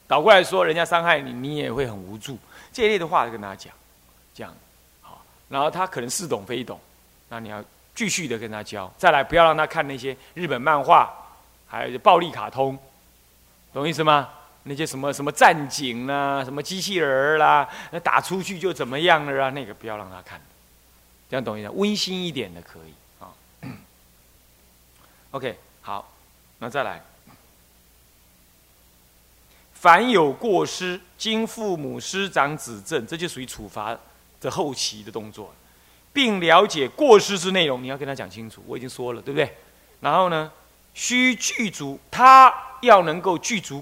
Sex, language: male, Chinese